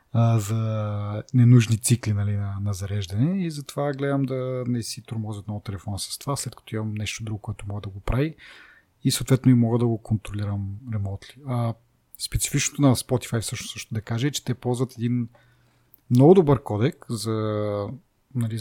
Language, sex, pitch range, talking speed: Bulgarian, male, 105-125 Hz, 175 wpm